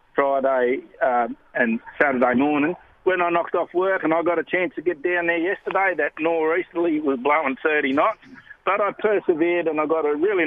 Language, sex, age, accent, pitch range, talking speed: English, male, 60-79, Australian, 145-185 Hz, 195 wpm